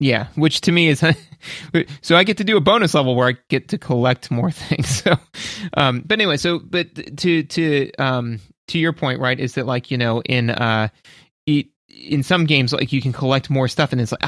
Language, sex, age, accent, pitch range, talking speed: English, male, 30-49, American, 130-165 Hz, 220 wpm